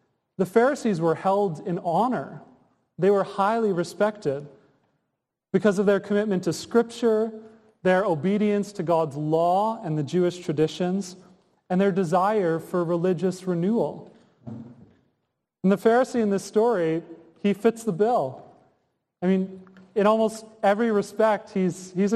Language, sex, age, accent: English, male, 30-49, American